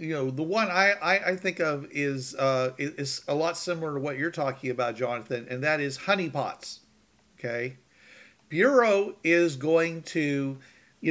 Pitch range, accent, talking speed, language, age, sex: 130-165 Hz, American, 160 wpm, English, 50-69, male